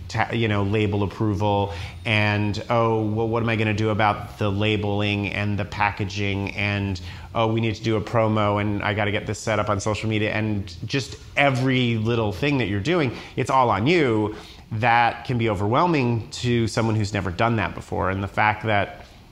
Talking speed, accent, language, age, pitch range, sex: 200 wpm, American, English, 30-49, 95-110 Hz, male